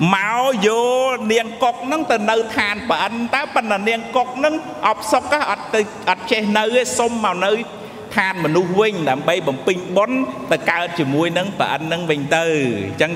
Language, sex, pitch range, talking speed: English, male, 170-230 Hz, 55 wpm